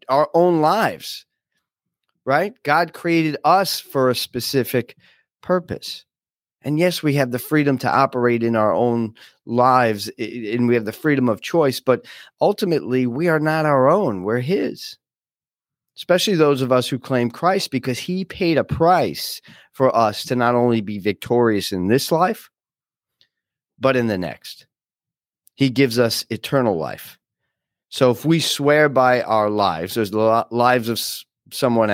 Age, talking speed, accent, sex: 40-59, 155 wpm, American, male